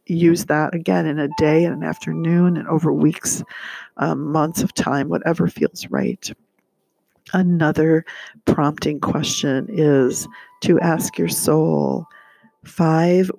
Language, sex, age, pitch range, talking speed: English, female, 50-69, 150-170 Hz, 125 wpm